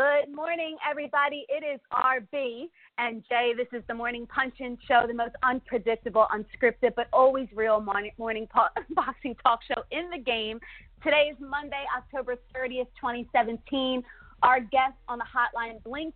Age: 30-49